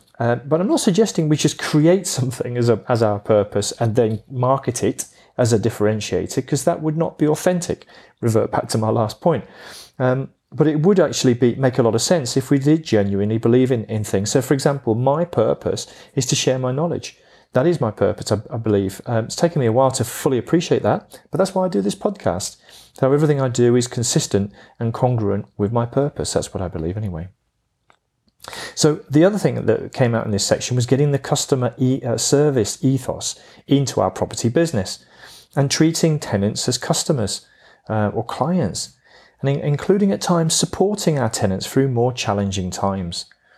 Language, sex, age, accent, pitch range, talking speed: English, male, 40-59, British, 105-145 Hz, 200 wpm